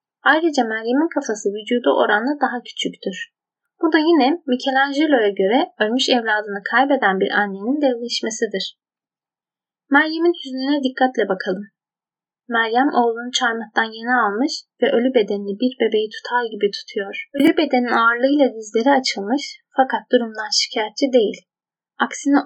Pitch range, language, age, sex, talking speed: 215-280 Hz, Turkish, 10-29, female, 120 wpm